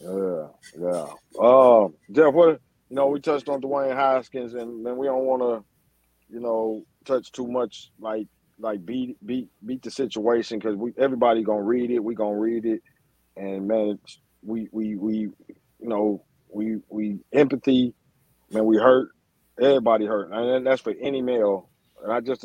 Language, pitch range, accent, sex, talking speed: English, 105-120 Hz, American, male, 175 wpm